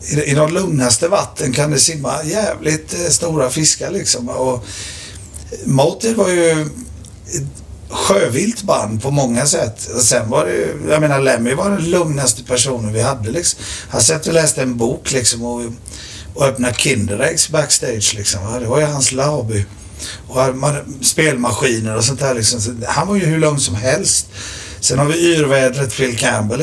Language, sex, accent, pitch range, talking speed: English, male, Swedish, 100-155 Hz, 170 wpm